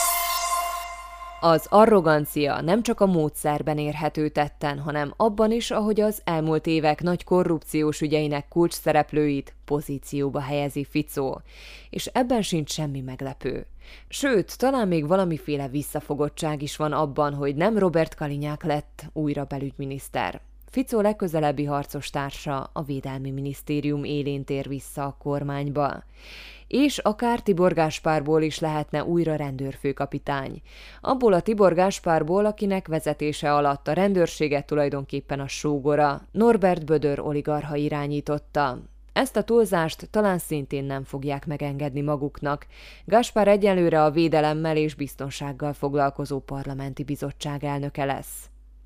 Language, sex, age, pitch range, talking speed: Hungarian, female, 20-39, 145-170 Hz, 120 wpm